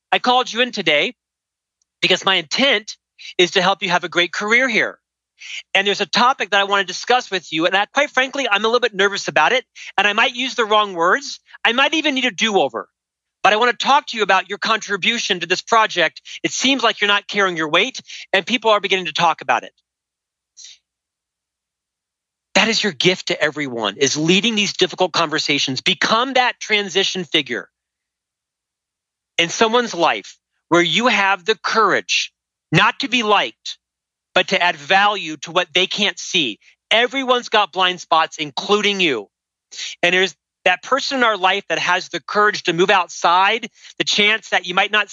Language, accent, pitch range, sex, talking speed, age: English, American, 180-225 Hz, male, 190 wpm, 40-59